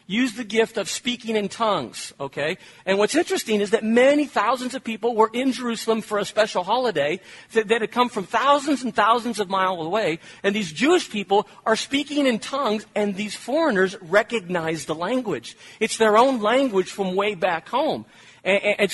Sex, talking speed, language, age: male, 180 wpm, English, 40-59